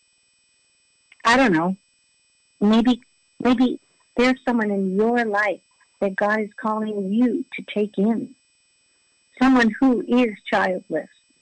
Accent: American